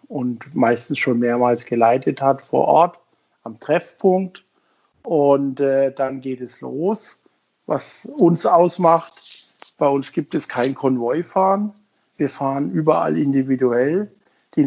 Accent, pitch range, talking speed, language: German, 135-160 Hz, 125 wpm, German